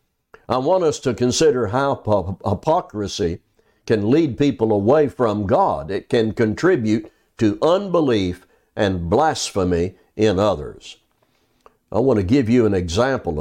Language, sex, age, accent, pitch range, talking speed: English, male, 60-79, American, 105-130 Hz, 130 wpm